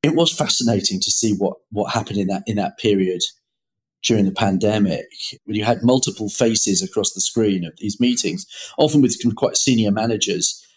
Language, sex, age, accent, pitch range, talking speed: English, male, 40-59, British, 105-145 Hz, 190 wpm